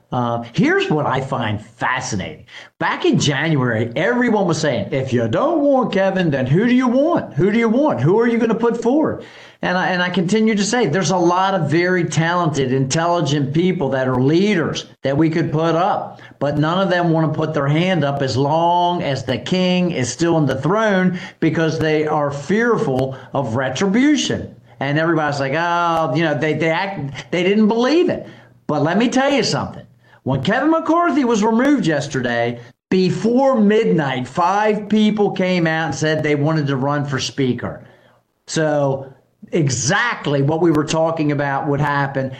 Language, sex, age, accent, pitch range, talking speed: English, male, 50-69, American, 140-190 Hz, 185 wpm